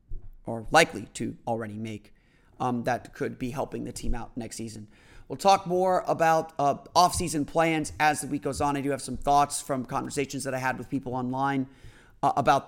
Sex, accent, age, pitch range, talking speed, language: male, American, 30-49, 125-155 Hz, 200 wpm, English